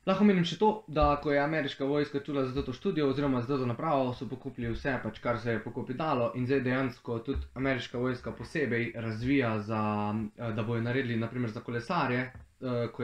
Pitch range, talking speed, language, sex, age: 115-145 Hz, 190 wpm, English, male, 20-39